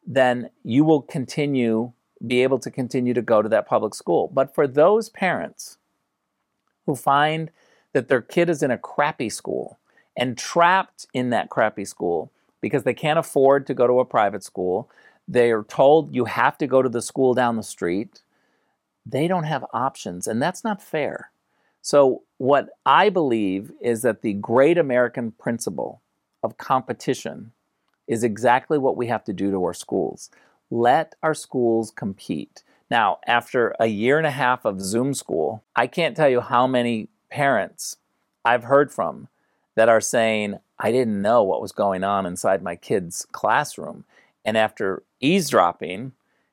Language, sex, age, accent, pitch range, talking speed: English, male, 50-69, American, 110-135 Hz, 165 wpm